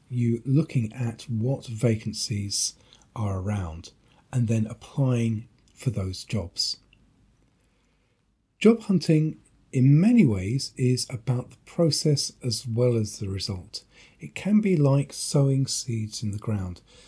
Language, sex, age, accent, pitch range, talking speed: English, male, 40-59, British, 105-140 Hz, 125 wpm